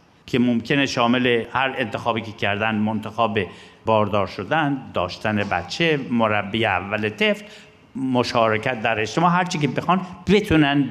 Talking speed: 125 wpm